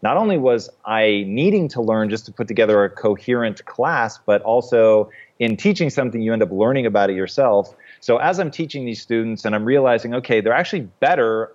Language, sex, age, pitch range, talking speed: English, male, 30-49, 105-125 Hz, 205 wpm